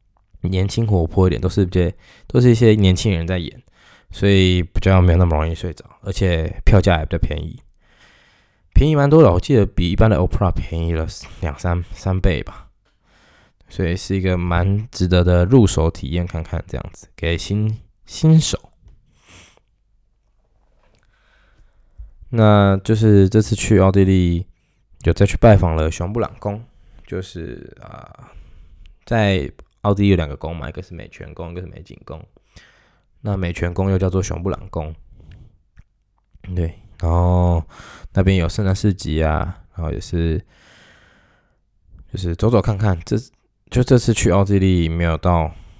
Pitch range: 85-100 Hz